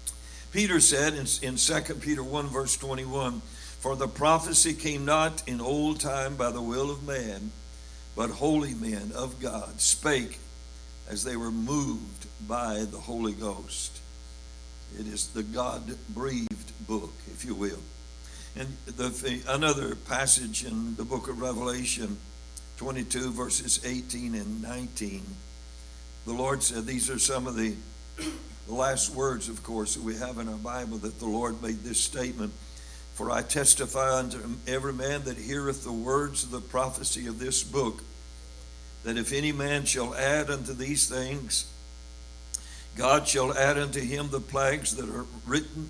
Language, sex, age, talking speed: English, male, 60-79, 155 wpm